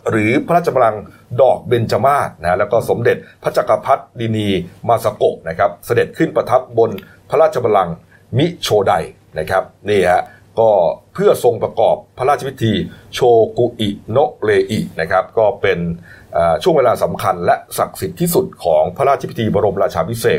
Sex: male